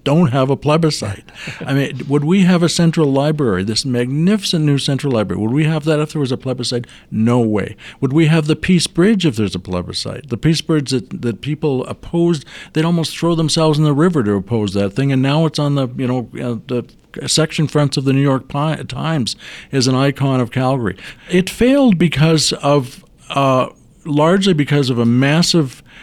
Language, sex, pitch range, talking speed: English, male, 115-150 Hz, 200 wpm